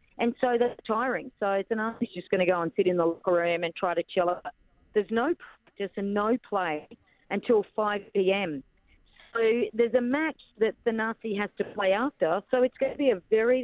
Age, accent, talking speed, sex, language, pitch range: 40-59, Australian, 215 wpm, female, English, 185-225 Hz